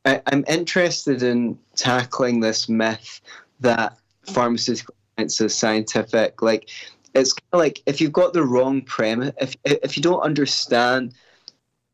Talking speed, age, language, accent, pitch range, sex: 135 wpm, 20-39, English, British, 110-140 Hz, male